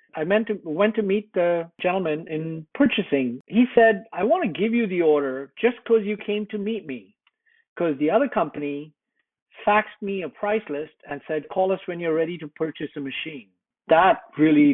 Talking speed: 190 wpm